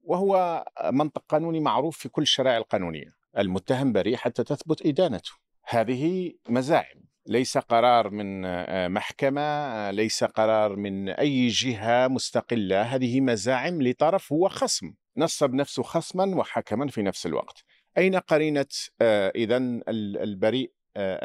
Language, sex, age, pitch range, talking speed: Arabic, male, 50-69, 115-150 Hz, 115 wpm